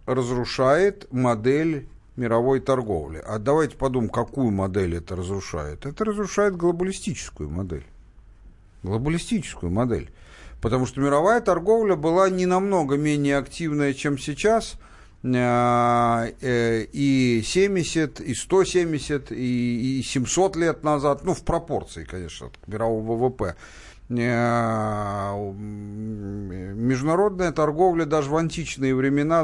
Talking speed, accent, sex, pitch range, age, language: 100 wpm, native, male, 115-160 Hz, 50-69, Russian